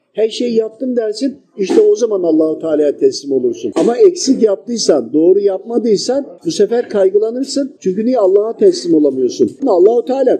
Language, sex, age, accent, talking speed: Turkish, male, 50-69, native, 155 wpm